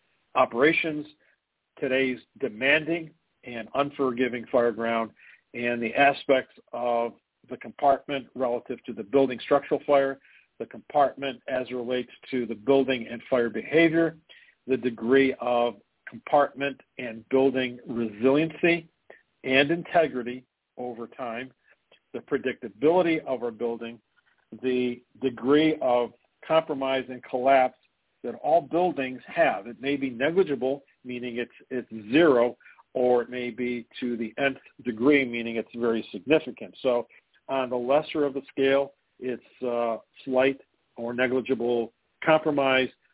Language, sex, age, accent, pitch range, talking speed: English, male, 50-69, American, 120-135 Hz, 125 wpm